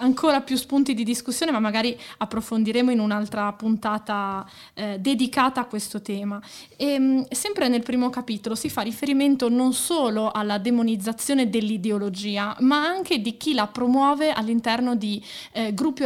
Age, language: 20-39, Italian